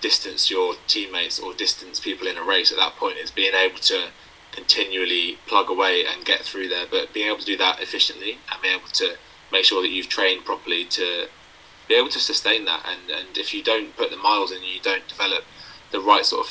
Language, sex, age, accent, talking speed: English, male, 20-39, British, 225 wpm